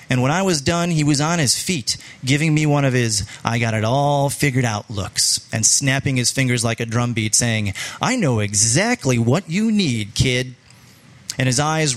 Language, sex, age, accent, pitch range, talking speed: English, male, 30-49, American, 115-150 Hz, 175 wpm